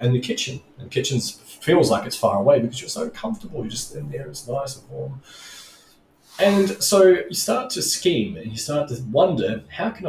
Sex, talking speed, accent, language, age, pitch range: male, 215 wpm, Australian, English, 30-49, 105-140 Hz